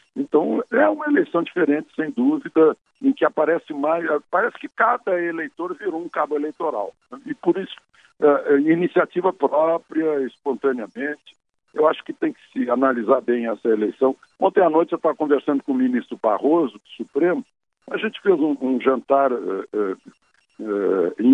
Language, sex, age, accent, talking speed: Portuguese, male, 60-79, Brazilian, 165 wpm